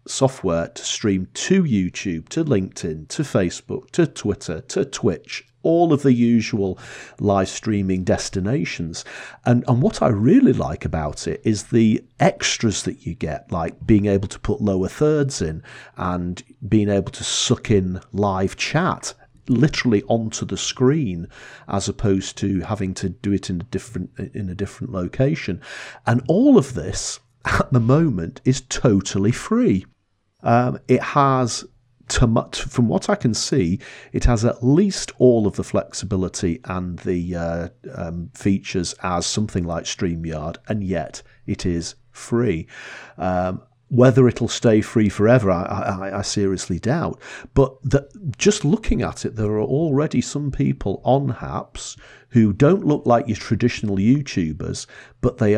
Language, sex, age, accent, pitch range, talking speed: English, male, 40-59, British, 95-125 Hz, 155 wpm